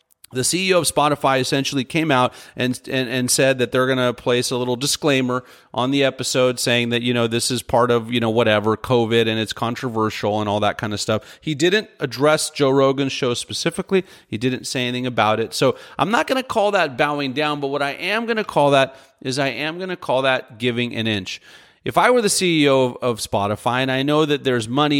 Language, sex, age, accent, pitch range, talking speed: English, male, 30-49, American, 125-160 Hz, 230 wpm